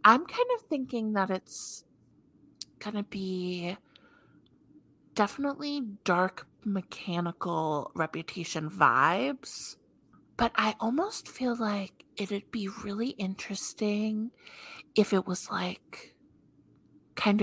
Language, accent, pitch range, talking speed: English, American, 165-205 Hz, 95 wpm